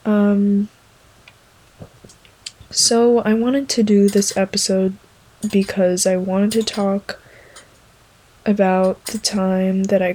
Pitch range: 185-205 Hz